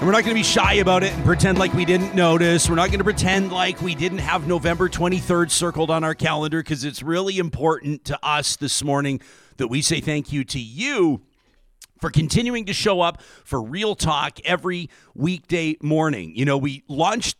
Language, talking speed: English, 205 wpm